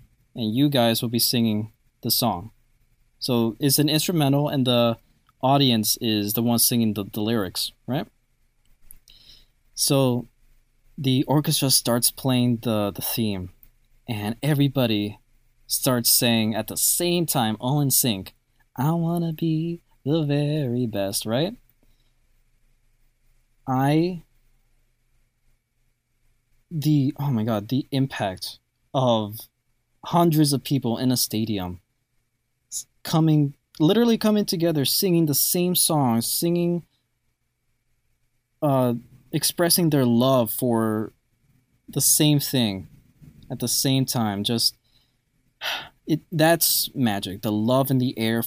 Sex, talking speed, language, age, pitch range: male, 115 wpm, English, 20-39, 115-140 Hz